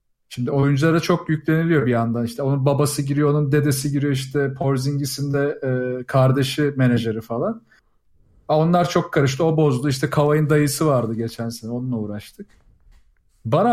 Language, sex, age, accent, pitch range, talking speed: Turkish, male, 40-59, native, 125-175 Hz, 155 wpm